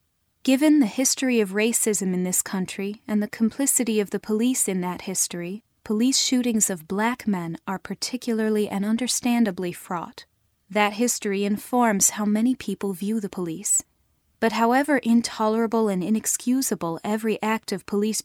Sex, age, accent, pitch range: female, 20-39, American, 195-230 Hz